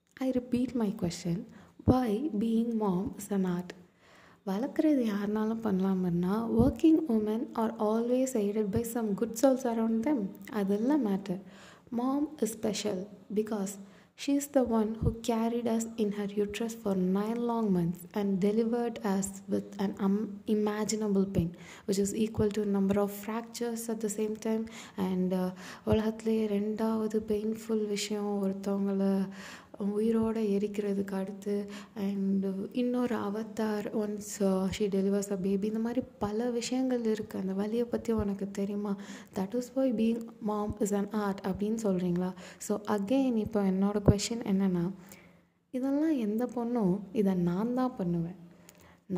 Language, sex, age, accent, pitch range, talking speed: Tamil, female, 20-39, native, 195-230 Hz, 140 wpm